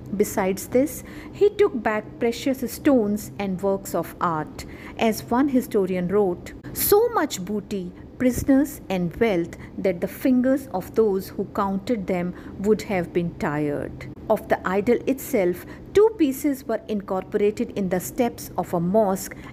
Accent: Indian